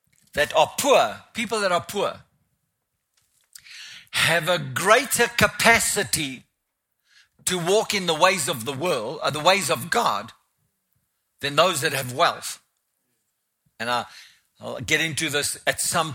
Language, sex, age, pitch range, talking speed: English, male, 60-79, 135-180 Hz, 140 wpm